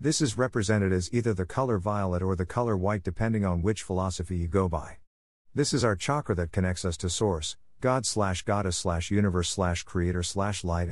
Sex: male